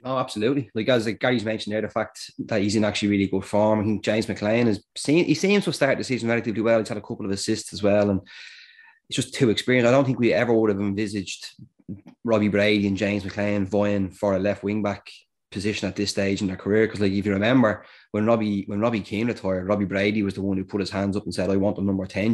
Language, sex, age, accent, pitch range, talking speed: English, male, 20-39, Irish, 95-110 Hz, 265 wpm